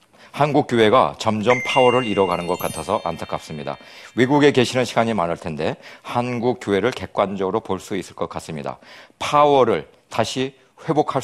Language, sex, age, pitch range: Korean, male, 40-59, 95-130 Hz